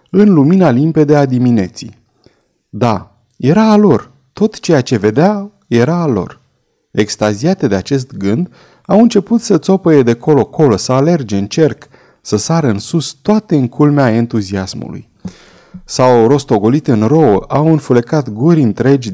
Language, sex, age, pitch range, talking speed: Romanian, male, 30-49, 110-160 Hz, 145 wpm